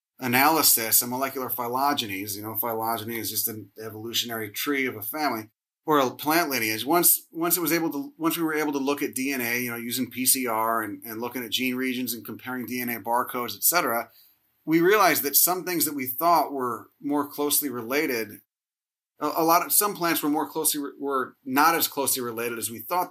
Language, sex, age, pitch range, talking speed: English, male, 30-49, 115-150 Hz, 205 wpm